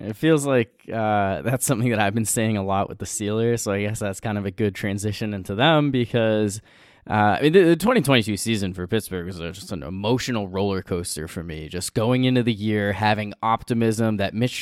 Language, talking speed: English, 210 wpm